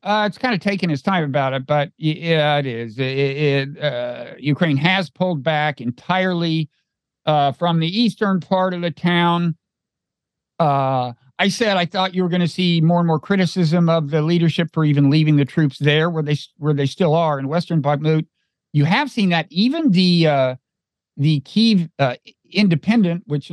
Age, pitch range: 50-69, 145-185 Hz